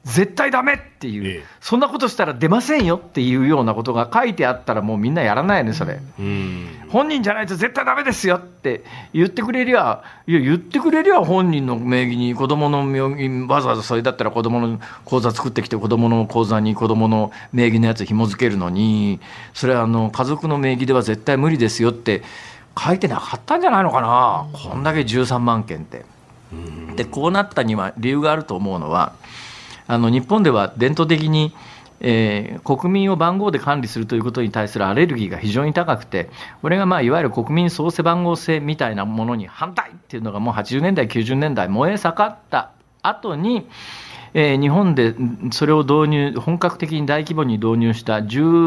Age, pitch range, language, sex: 50-69, 115-170 Hz, Japanese, male